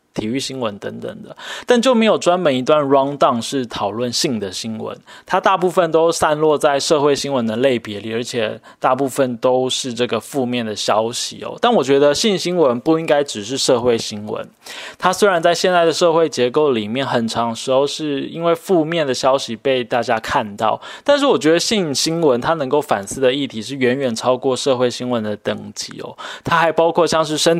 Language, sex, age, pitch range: Chinese, male, 20-39, 120-155 Hz